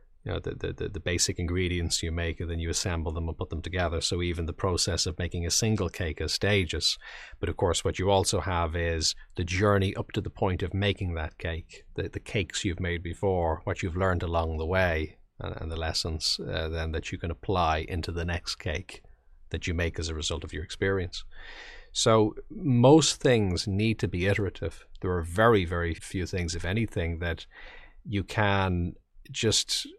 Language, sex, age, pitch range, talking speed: English, male, 40-59, 85-105 Hz, 200 wpm